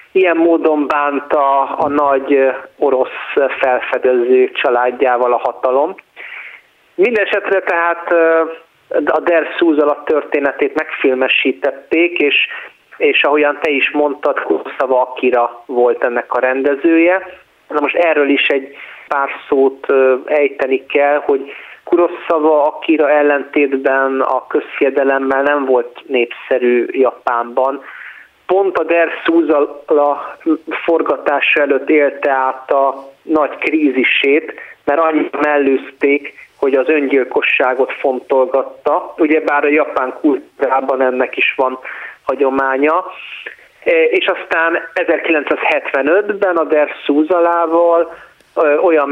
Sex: male